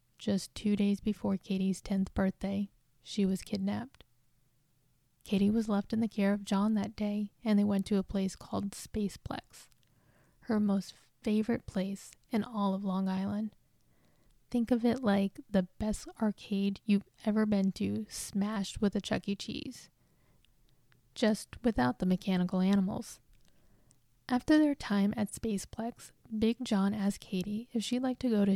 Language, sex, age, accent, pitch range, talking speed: English, female, 20-39, American, 195-225 Hz, 155 wpm